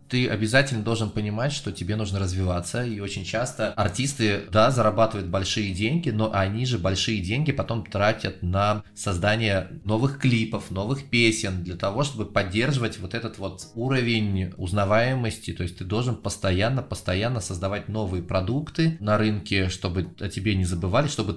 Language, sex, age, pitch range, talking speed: Russian, male, 20-39, 95-115 Hz, 150 wpm